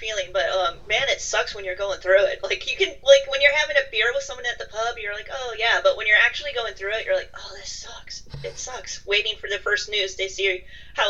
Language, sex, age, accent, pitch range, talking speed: English, female, 30-49, American, 205-335 Hz, 275 wpm